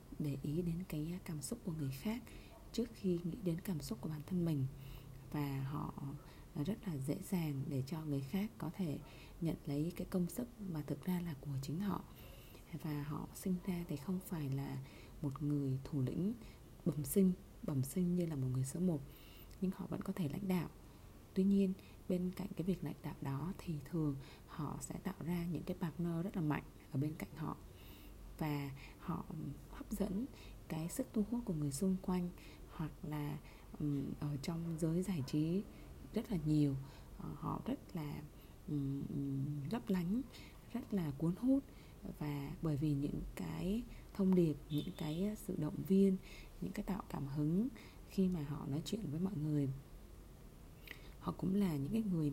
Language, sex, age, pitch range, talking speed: Vietnamese, female, 20-39, 145-185 Hz, 185 wpm